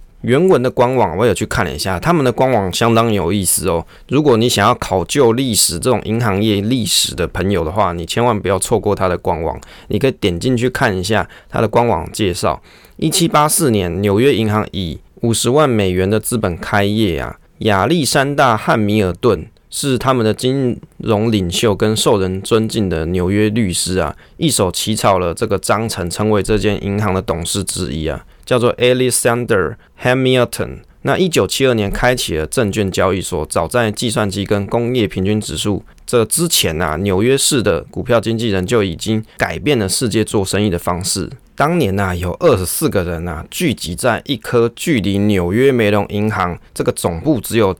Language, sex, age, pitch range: Chinese, male, 20-39, 95-120 Hz